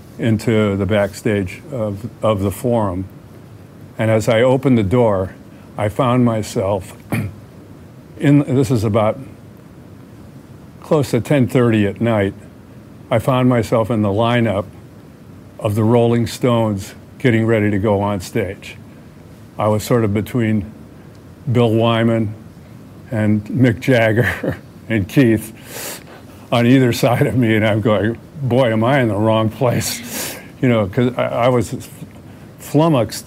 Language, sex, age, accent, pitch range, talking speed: English, male, 50-69, American, 105-125 Hz, 135 wpm